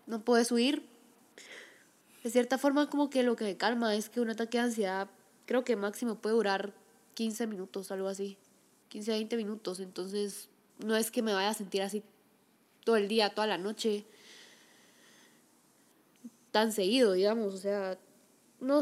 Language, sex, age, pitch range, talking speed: Spanish, female, 10-29, 205-250 Hz, 165 wpm